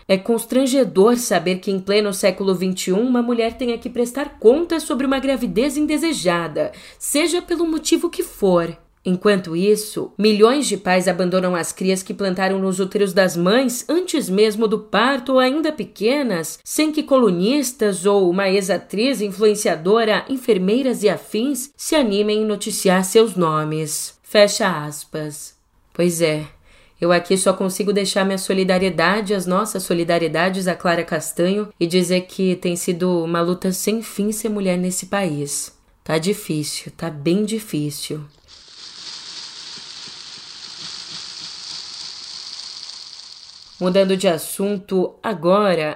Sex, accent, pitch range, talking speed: female, Brazilian, 180-235 Hz, 130 wpm